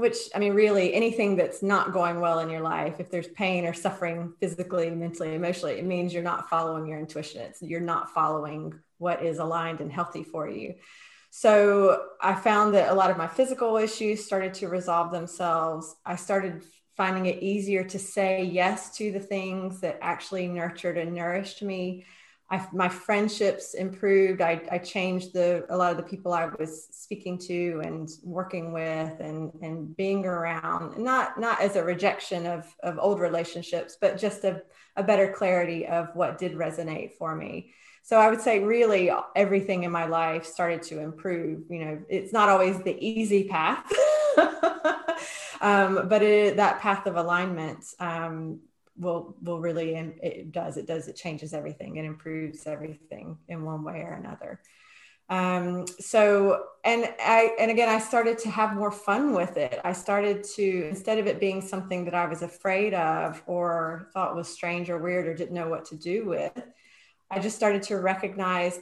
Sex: female